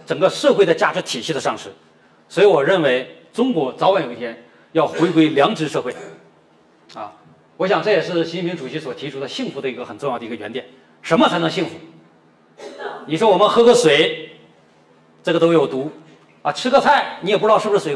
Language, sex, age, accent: Chinese, male, 40-59, native